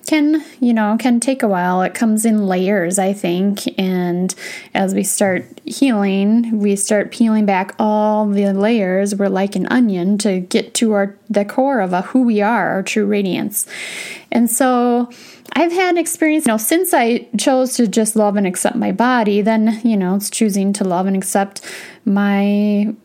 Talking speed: 180 wpm